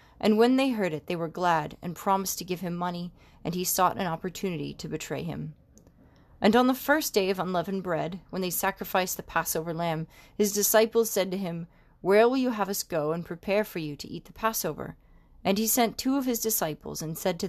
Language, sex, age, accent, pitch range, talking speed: English, female, 30-49, American, 165-205 Hz, 225 wpm